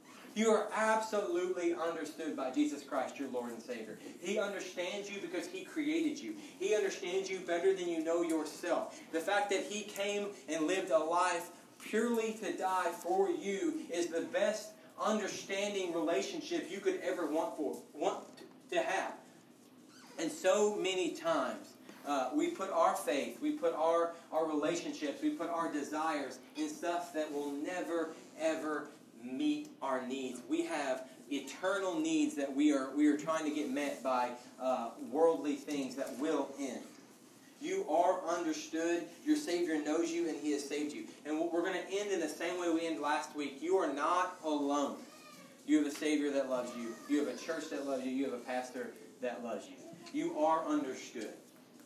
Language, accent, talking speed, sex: English, American, 175 wpm, male